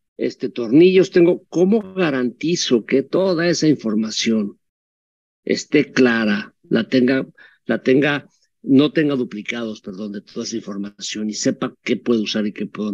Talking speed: 145 wpm